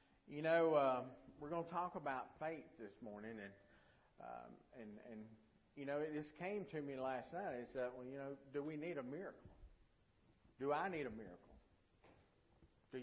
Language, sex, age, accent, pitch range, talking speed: English, male, 50-69, American, 125-170 Hz, 185 wpm